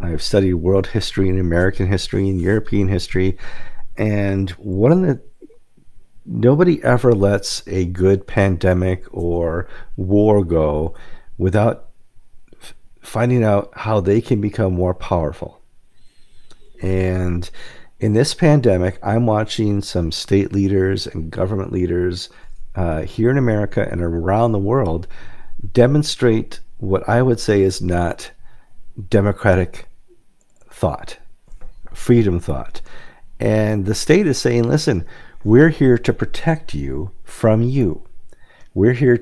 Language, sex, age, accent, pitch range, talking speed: English, male, 50-69, American, 90-115 Hz, 120 wpm